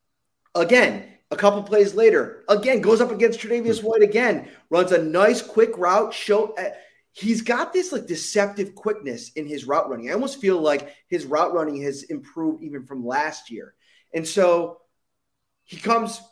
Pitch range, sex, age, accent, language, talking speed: 140-215 Hz, male, 30-49, American, English, 165 wpm